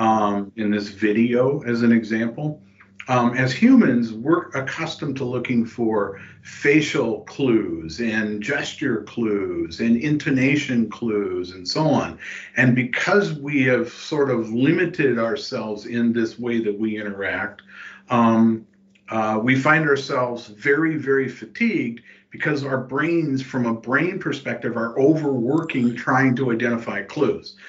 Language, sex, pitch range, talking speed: English, male, 115-145 Hz, 130 wpm